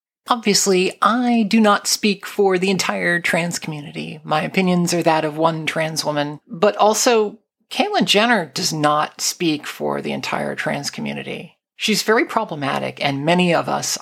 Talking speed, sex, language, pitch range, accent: 160 wpm, male, English, 155-205 Hz, American